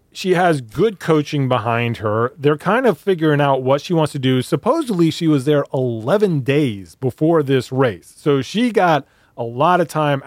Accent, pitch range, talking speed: American, 125-155 Hz, 185 wpm